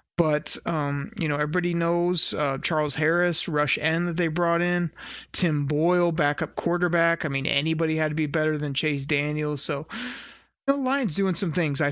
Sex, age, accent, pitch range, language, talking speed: male, 30-49, American, 150-175 Hz, English, 190 wpm